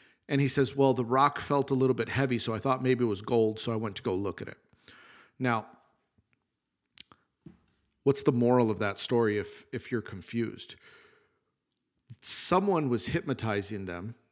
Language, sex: English, male